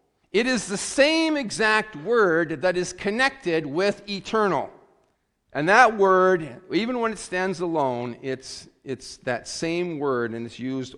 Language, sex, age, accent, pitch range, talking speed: English, male, 50-69, American, 120-175 Hz, 150 wpm